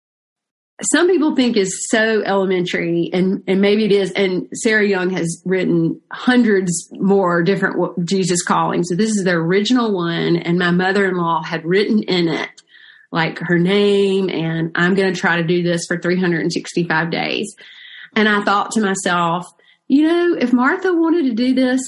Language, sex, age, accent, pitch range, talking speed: English, female, 30-49, American, 180-240 Hz, 165 wpm